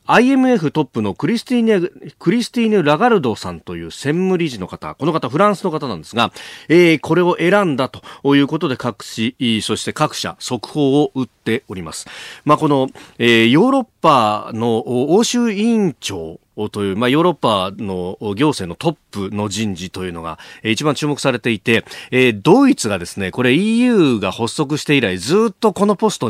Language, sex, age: Japanese, male, 40-59